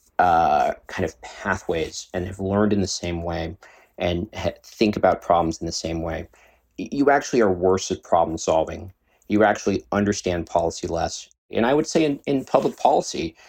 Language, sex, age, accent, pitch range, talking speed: English, male, 40-59, American, 90-115 Hz, 180 wpm